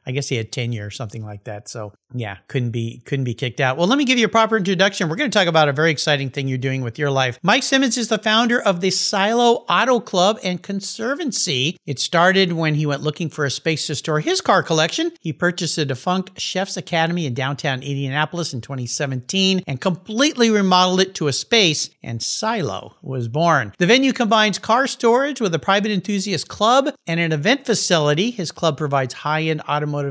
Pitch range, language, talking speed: 140-195 Hz, English, 215 wpm